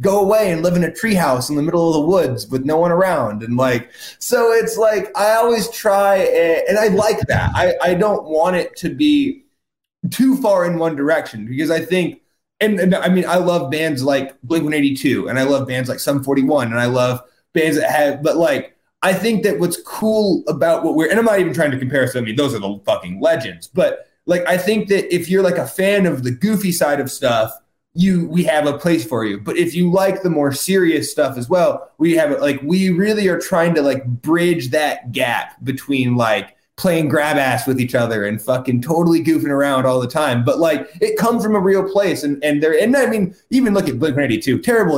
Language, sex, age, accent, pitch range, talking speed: English, male, 20-39, American, 140-200 Hz, 235 wpm